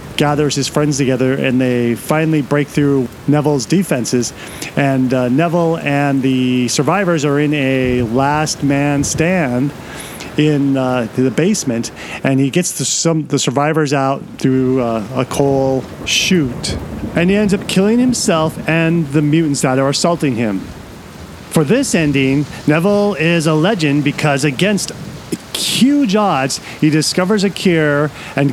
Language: English